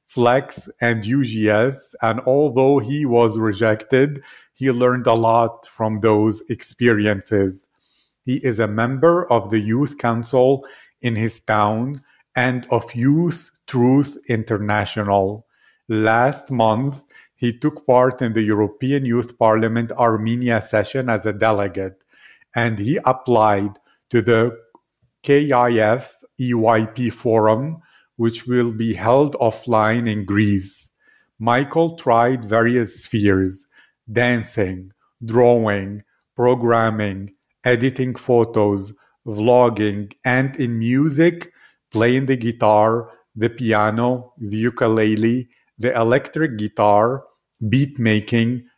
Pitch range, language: 110-130 Hz, English